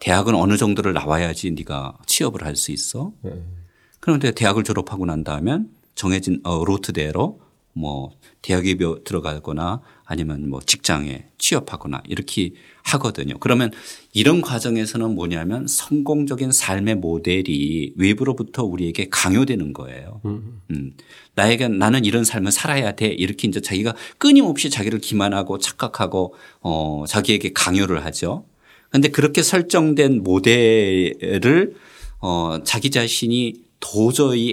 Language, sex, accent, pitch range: Korean, male, native, 90-115 Hz